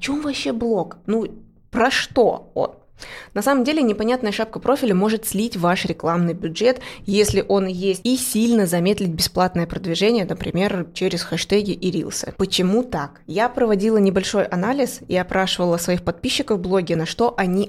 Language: Russian